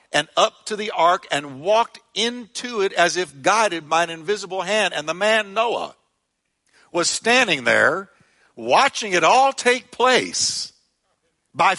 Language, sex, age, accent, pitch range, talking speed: English, male, 60-79, American, 150-210 Hz, 150 wpm